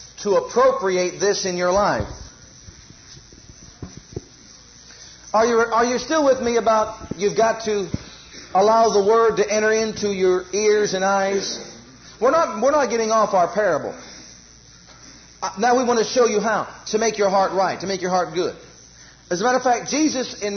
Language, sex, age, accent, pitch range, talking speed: English, male, 40-59, American, 185-220 Hz, 175 wpm